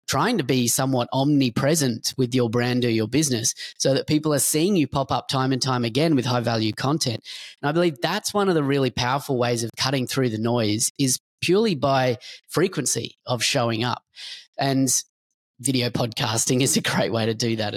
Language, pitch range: English, 125-155 Hz